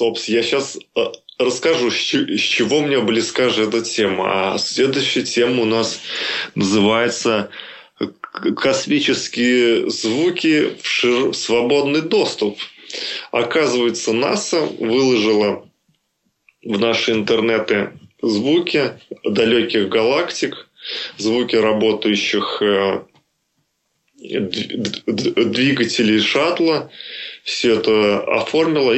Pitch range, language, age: 110-155 Hz, Russian, 20-39